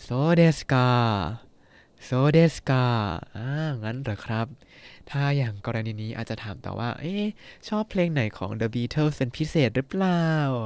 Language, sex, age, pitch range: Thai, male, 20-39, 110-140 Hz